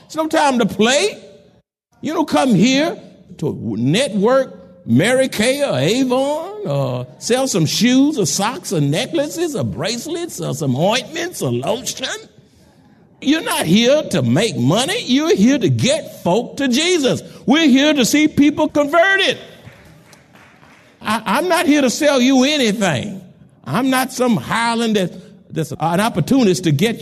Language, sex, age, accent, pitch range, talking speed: English, male, 60-79, American, 175-285 Hz, 145 wpm